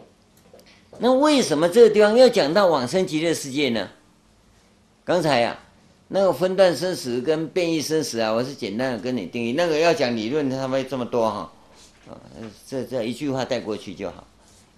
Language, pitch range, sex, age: Chinese, 105-145 Hz, male, 50-69